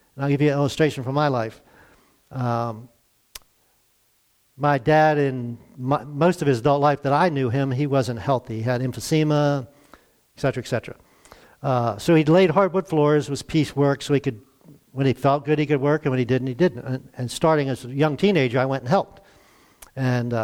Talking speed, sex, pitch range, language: 205 wpm, male, 125-150 Hz, English